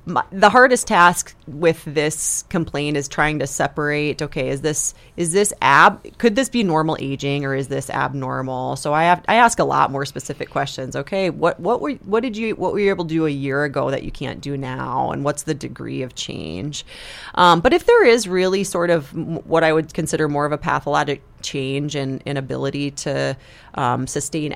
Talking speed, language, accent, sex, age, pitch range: 205 wpm, English, American, female, 30-49, 145-180 Hz